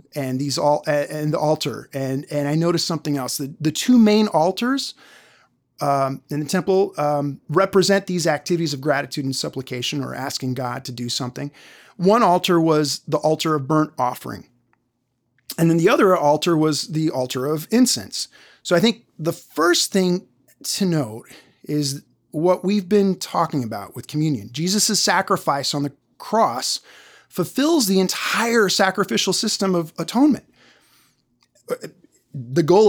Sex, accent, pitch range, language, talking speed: male, American, 140-190 Hz, English, 150 wpm